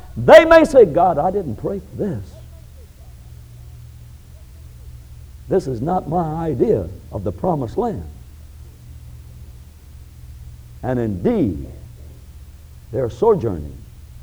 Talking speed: 95 wpm